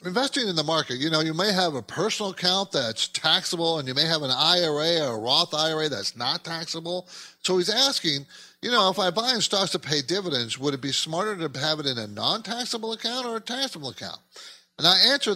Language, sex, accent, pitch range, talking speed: English, male, American, 150-195 Hz, 225 wpm